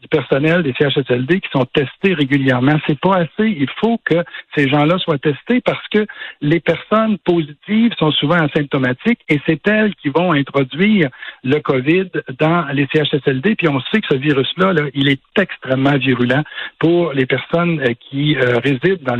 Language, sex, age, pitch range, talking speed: French, male, 60-79, 135-175 Hz, 170 wpm